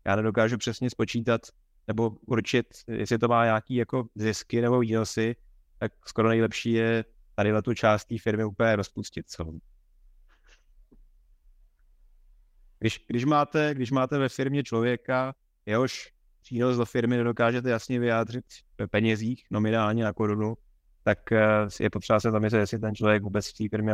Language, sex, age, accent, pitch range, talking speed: Czech, male, 30-49, native, 100-120 Hz, 145 wpm